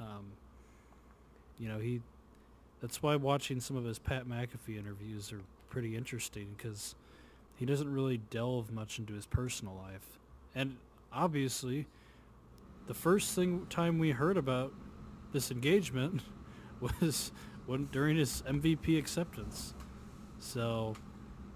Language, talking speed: English, 120 wpm